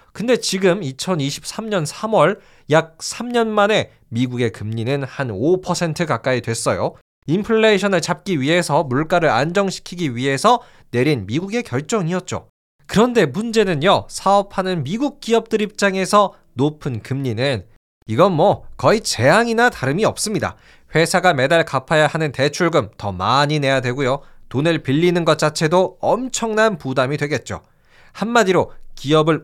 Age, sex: 20-39, male